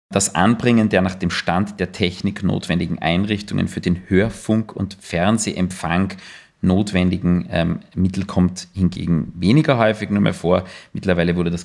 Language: German